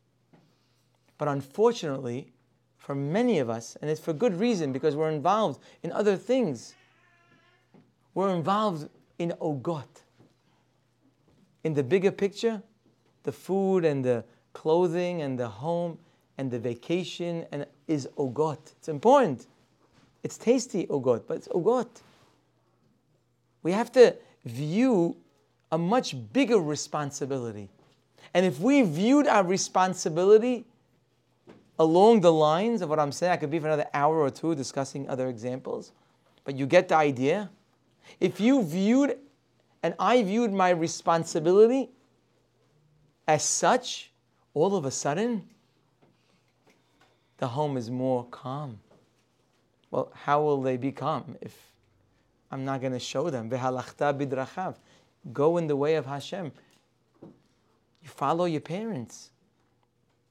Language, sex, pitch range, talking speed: English, male, 135-185 Hz, 125 wpm